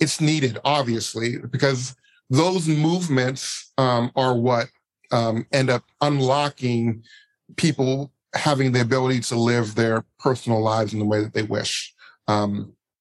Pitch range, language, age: 120-150 Hz, English, 40-59